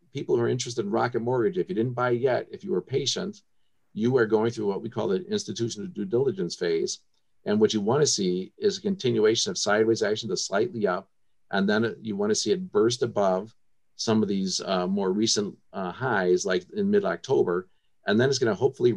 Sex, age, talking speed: male, 50-69, 210 wpm